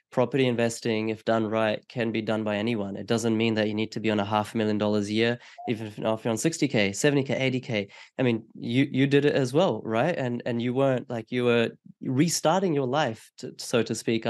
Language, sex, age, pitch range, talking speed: English, male, 20-39, 115-135 Hz, 240 wpm